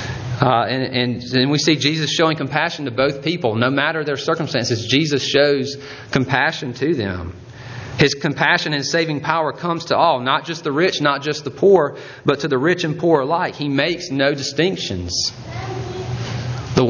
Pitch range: 125-155 Hz